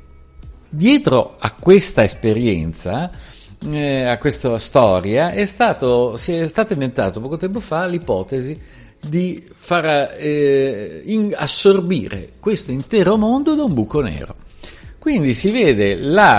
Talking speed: 115 wpm